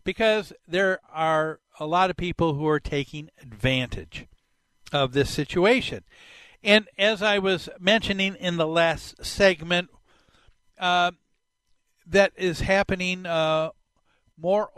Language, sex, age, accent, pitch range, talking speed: English, male, 60-79, American, 145-195 Hz, 120 wpm